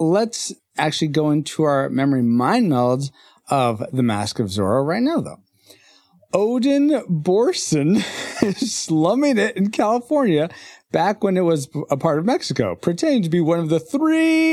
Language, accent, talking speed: English, American, 155 wpm